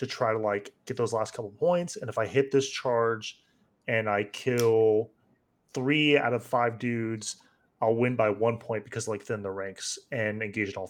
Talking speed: 205 wpm